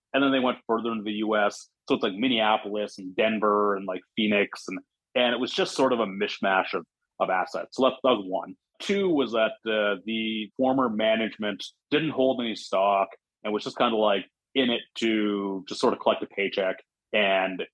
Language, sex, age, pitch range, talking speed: English, male, 30-49, 105-130 Hz, 205 wpm